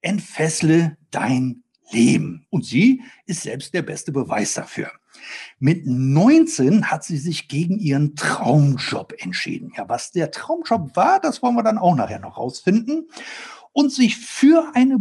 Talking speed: 150 wpm